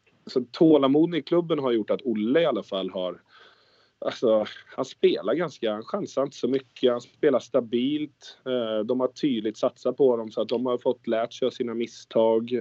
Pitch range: 95-130 Hz